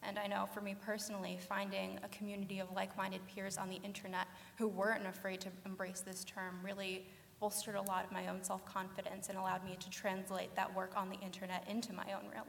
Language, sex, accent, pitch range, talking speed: English, female, American, 190-205 Hz, 210 wpm